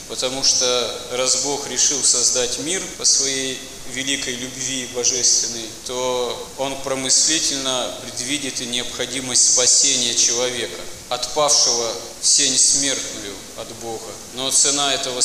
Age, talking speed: 20-39, 110 wpm